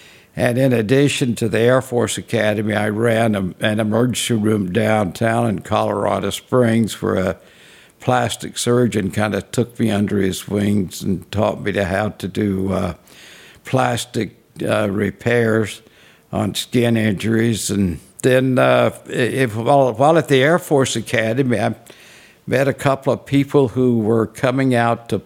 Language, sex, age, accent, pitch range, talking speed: English, male, 60-79, American, 105-125 Hz, 145 wpm